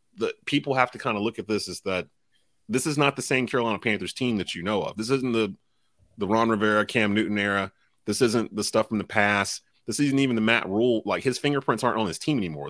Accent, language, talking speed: American, English, 250 wpm